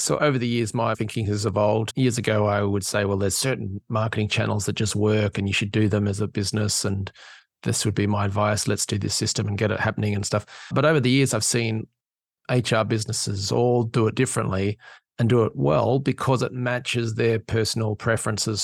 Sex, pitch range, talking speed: male, 105-120 Hz, 215 wpm